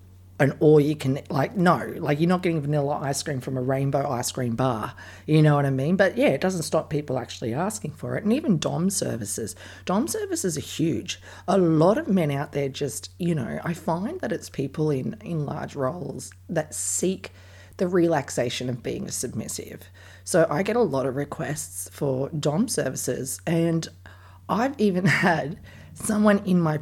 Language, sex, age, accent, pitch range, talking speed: English, female, 40-59, Australian, 115-165 Hz, 190 wpm